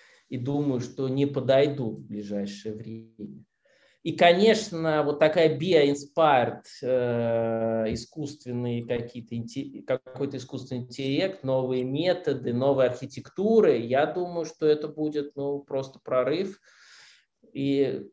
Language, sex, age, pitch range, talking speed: Russian, male, 20-39, 120-155 Hz, 100 wpm